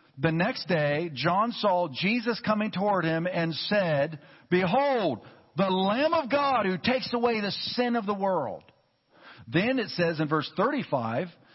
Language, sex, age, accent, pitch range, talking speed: English, male, 50-69, American, 155-215 Hz, 155 wpm